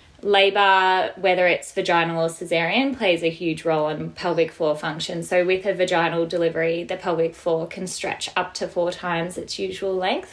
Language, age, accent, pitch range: English, 20-39, Australian, 170-195 Hz